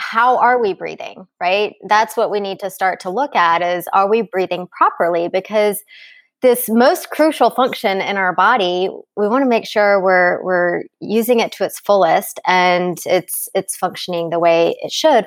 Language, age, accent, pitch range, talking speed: English, 20-39, American, 185-220 Hz, 185 wpm